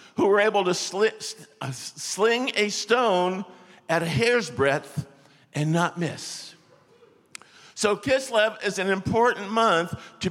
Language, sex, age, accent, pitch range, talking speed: English, male, 60-79, American, 175-220 Hz, 120 wpm